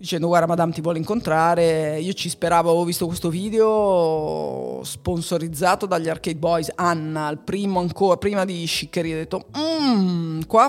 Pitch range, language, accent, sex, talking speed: 155-175 Hz, Italian, native, female, 155 wpm